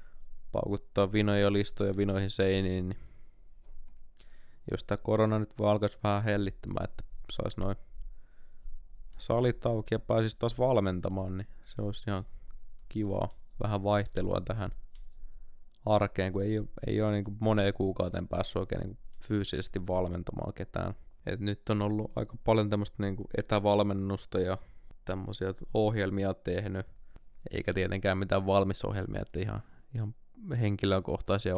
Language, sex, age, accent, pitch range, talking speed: Finnish, male, 20-39, native, 95-110 Hz, 130 wpm